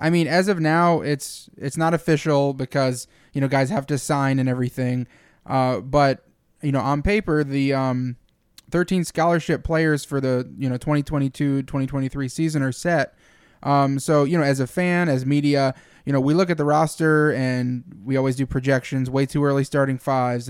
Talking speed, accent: 200 wpm, American